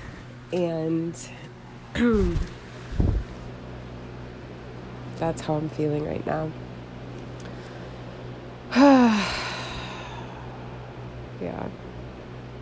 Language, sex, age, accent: English, female, 20-39, American